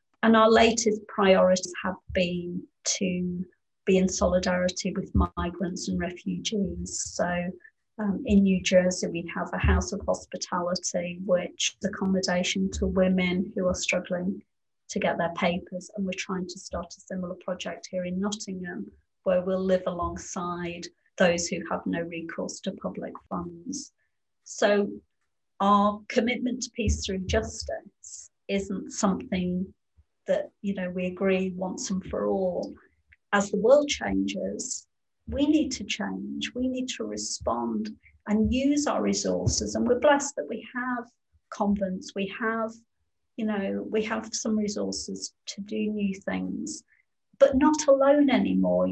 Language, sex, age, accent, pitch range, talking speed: English, female, 30-49, British, 175-220 Hz, 145 wpm